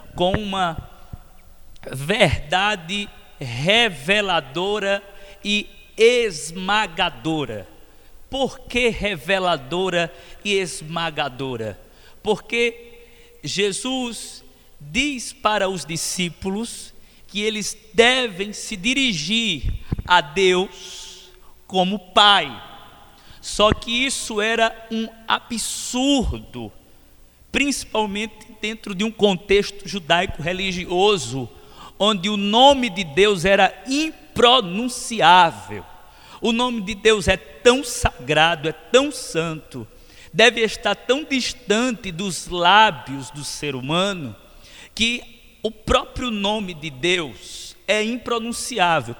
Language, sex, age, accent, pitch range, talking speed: Portuguese, male, 50-69, Brazilian, 170-230 Hz, 90 wpm